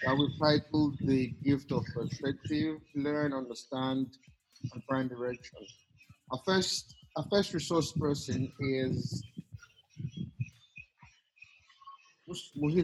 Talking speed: 95 wpm